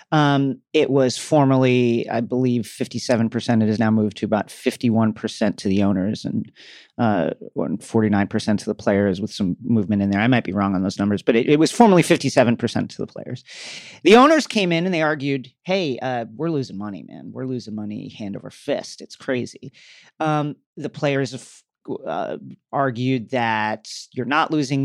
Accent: American